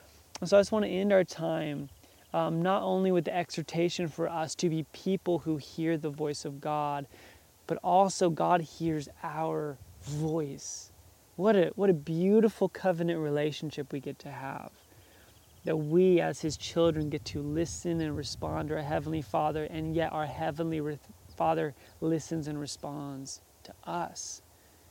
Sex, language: male, English